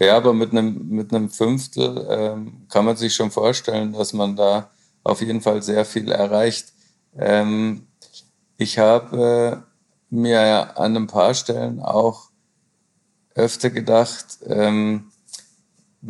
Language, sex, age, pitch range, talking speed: German, male, 50-69, 110-120 Hz, 125 wpm